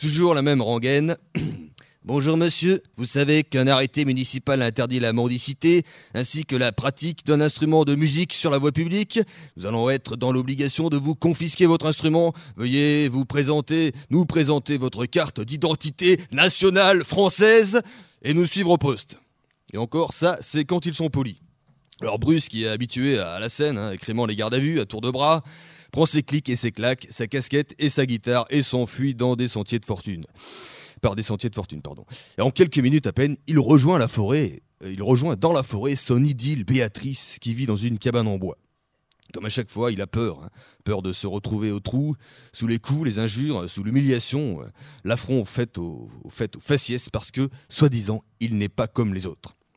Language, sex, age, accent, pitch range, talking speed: French, male, 30-49, French, 120-155 Hz, 195 wpm